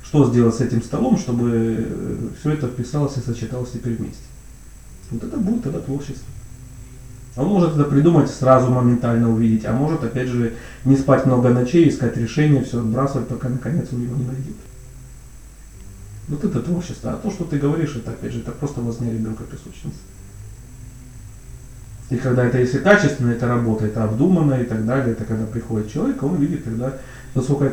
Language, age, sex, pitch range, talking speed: Russian, 30-49, male, 115-135 Hz, 175 wpm